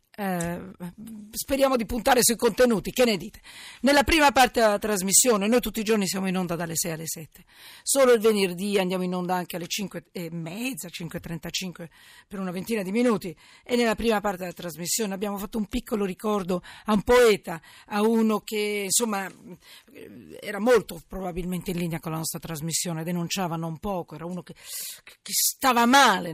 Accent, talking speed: native, 180 wpm